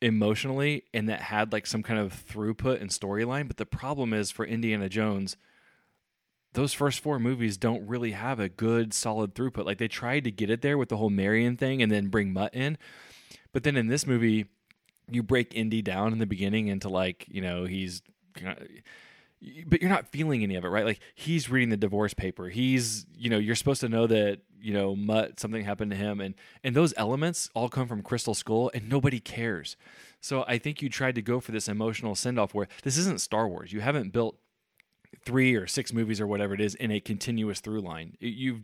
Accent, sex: American, male